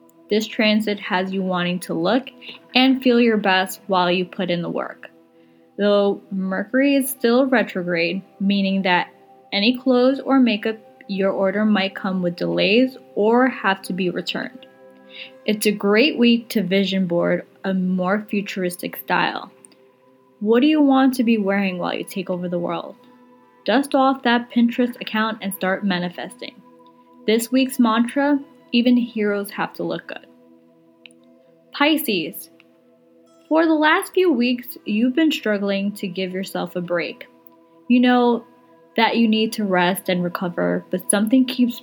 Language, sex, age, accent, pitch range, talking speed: English, female, 10-29, American, 175-240 Hz, 150 wpm